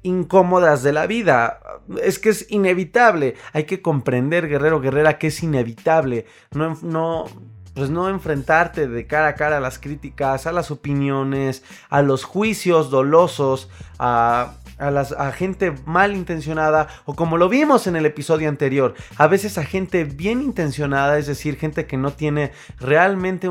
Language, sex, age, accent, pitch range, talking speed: Spanish, male, 30-49, Mexican, 125-165 Hz, 160 wpm